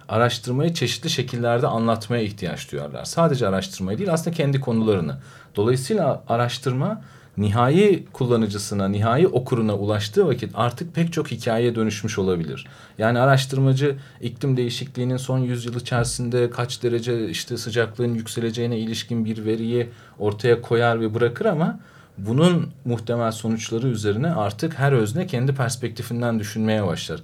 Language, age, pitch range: Turkish, 40-59, 105-135 Hz